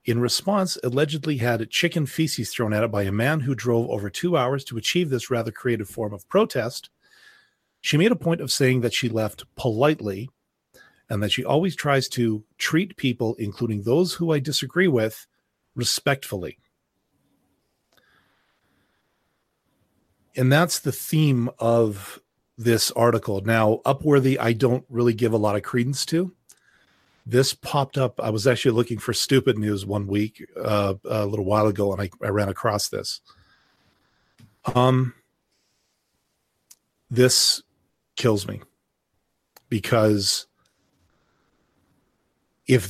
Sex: male